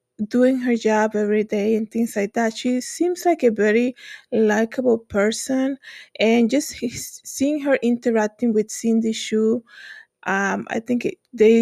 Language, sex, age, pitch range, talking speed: English, female, 20-39, 215-250 Hz, 150 wpm